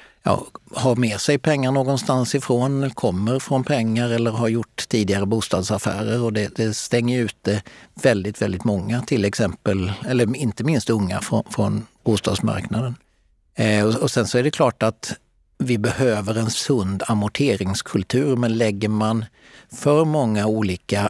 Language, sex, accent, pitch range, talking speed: Swedish, male, native, 100-120 Hz, 150 wpm